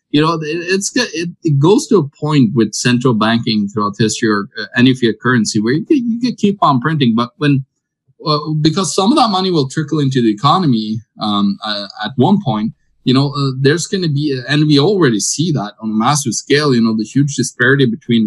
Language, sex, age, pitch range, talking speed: English, male, 20-39, 115-150 Hz, 225 wpm